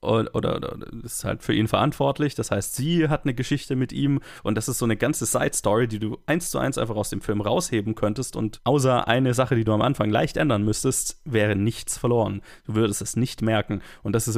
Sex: male